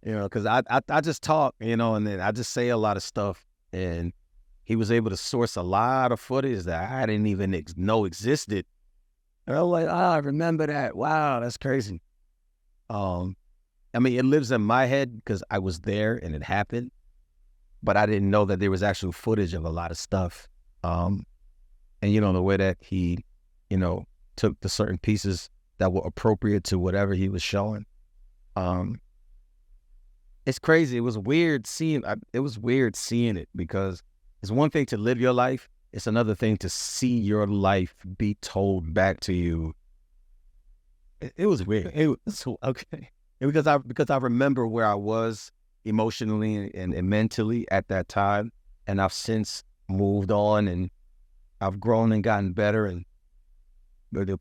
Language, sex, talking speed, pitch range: English, male, 185 wpm, 85-115 Hz